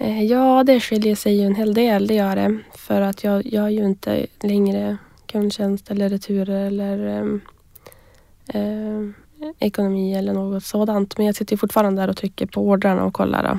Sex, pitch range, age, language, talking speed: female, 190-210 Hz, 20-39, English, 175 wpm